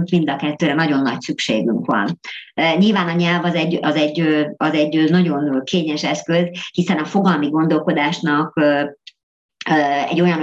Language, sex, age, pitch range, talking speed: Hungarian, male, 50-69, 145-170 Hz, 125 wpm